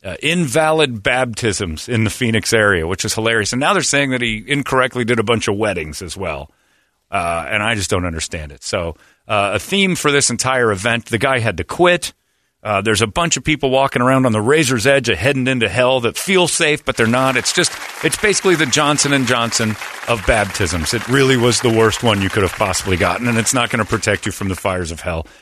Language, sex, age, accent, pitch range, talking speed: English, male, 40-59, American, 95-135 Hz, 235 wpm